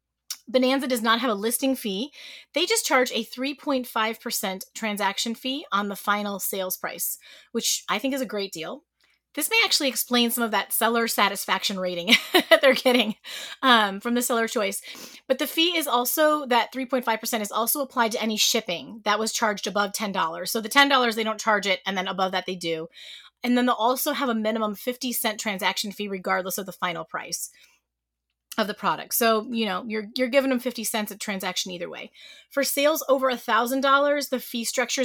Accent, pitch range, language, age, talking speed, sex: American, 200-265 Hz, English, 30-49, 195 wpm, female